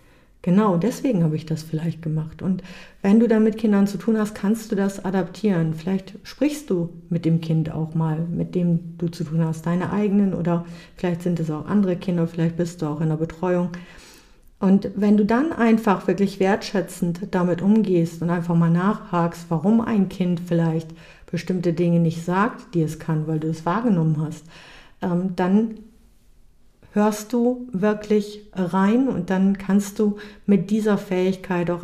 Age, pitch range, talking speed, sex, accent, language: 50-69, 170-205 Hz, 170 wpm, female, German, German